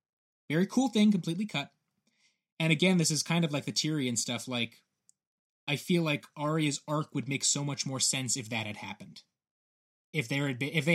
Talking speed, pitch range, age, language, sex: 205 wpm, 130-170 Hz, 20-39, English, male